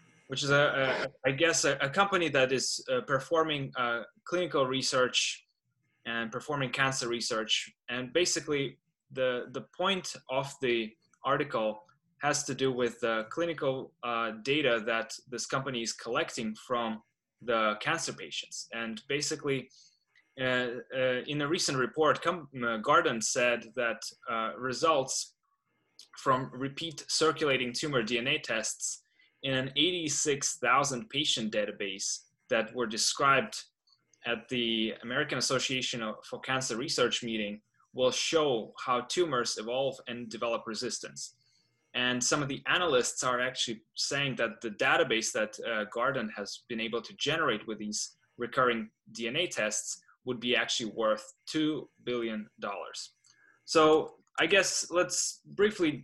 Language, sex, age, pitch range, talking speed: English, male, 20-39, 115-145 Hz, 130 wpm